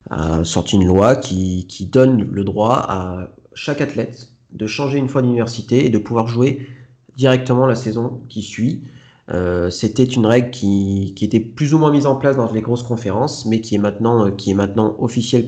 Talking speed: 200 wpm